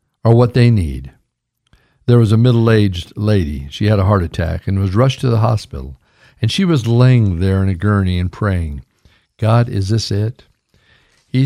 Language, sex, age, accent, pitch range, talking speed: English, male, 60-79, American, 100-145 Hz, 185 wpm